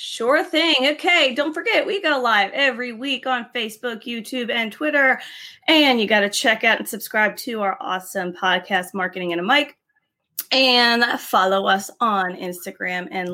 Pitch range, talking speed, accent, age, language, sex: 215-275 Hz, 165 wpm, American, 20-39, English, female